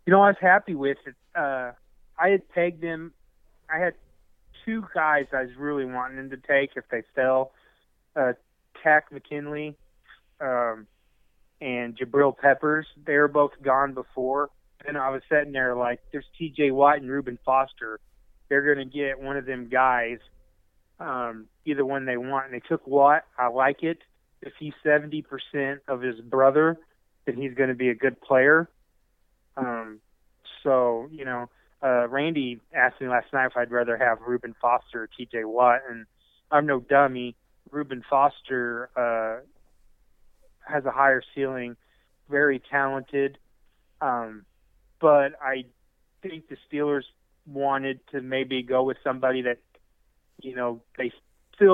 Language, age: English, 30-49